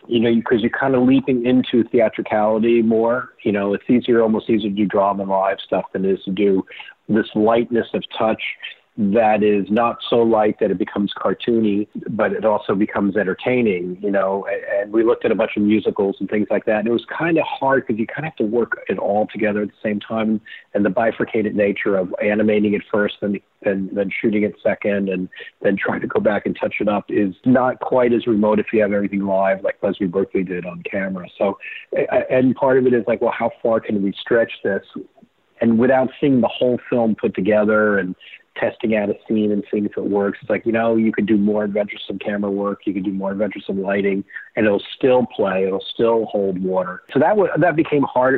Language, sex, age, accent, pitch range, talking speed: English, male, 40-59, American, 100-120 Hz, 225 wpm